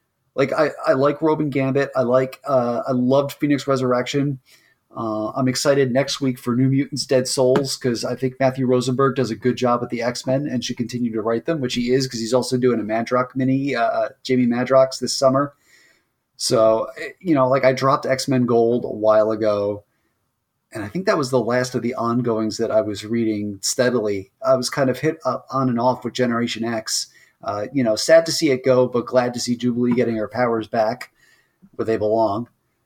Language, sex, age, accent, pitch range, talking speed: English, male, 30-49, American, 115-135 Hz, 210 wpm